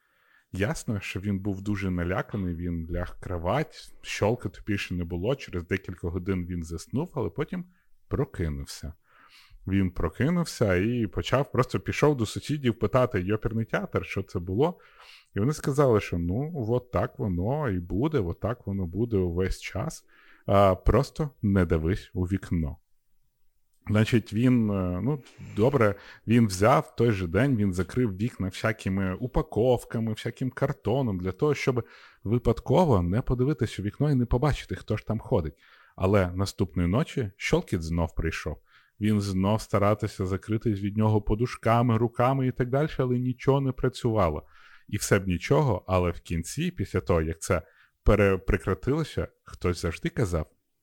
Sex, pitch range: male, 95-125 Hz